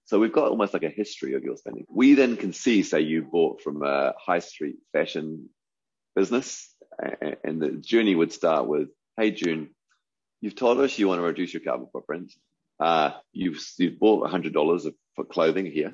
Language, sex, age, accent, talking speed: English, male, 30-49, British, 190 wpm